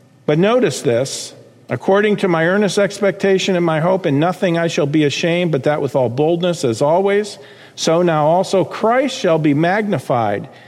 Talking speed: 175 wpm